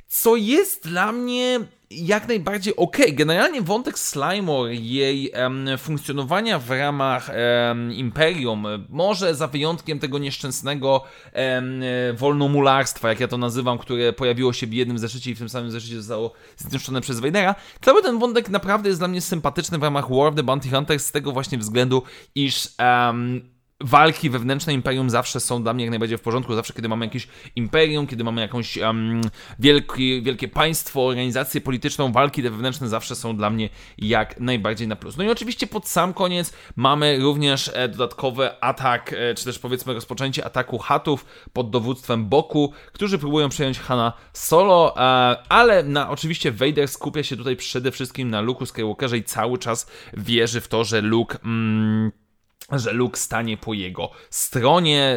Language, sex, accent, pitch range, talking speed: Polish, male, native, 120-150 Hz, 165 wpm